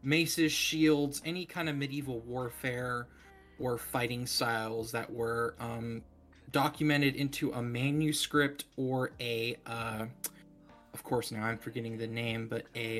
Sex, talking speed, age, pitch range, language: male, 135 wpm, 20-39, 120-155 Hz, English